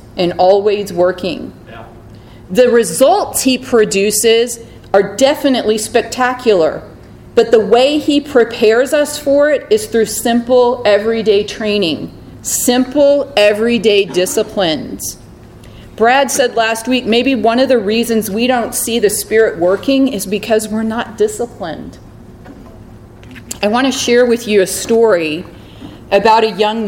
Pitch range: 185-240 Hz